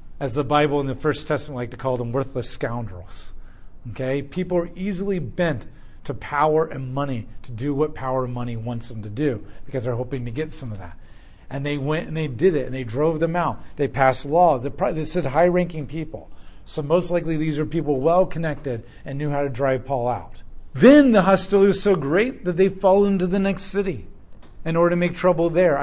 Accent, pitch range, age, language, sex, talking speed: American, 120-165 Hz, 40-59, English, male, 215 wpm